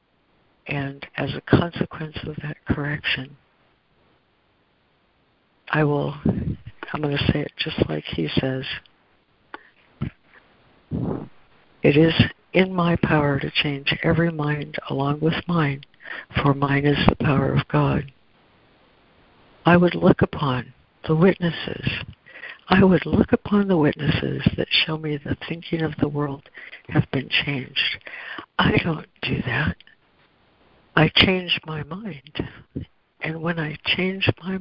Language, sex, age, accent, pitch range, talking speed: English, female, 60-79, American, 140-165 Hz, 125 wpm